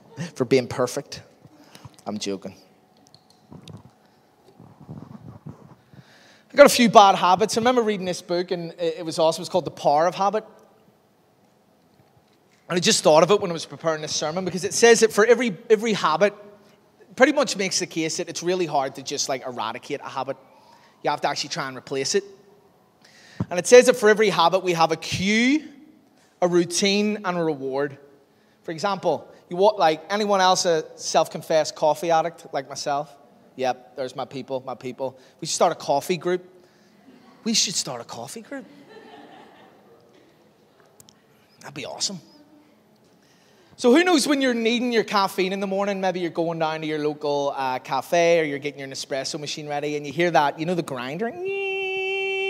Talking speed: 175 wpm